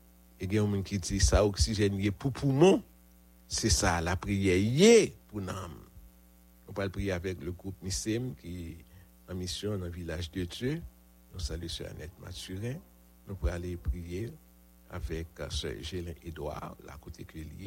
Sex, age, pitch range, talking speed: male, 60-79, 70-95 Hz, 160 wpm